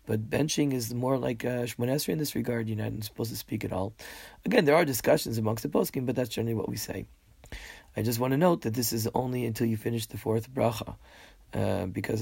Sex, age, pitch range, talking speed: male, 30-49, 110-125 Hz, 230 wpm